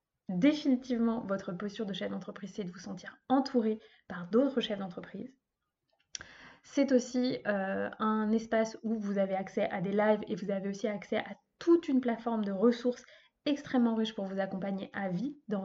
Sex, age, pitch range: female, 20-39, 200-245 Hz